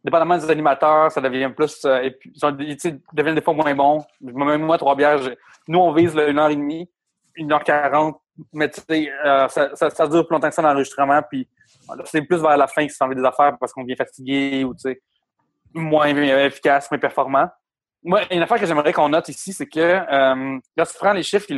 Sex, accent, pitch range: male, Canadian, 140-165 Hz